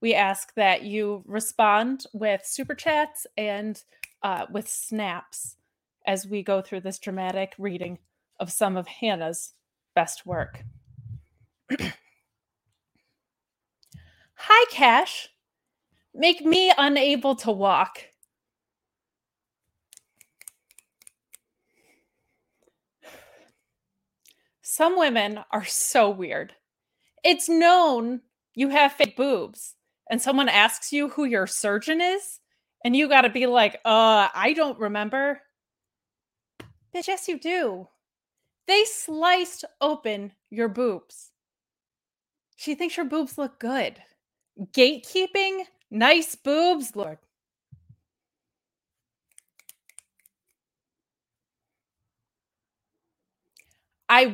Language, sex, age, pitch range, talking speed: English, female, 20-39, 200-300 Hz, 90 wpm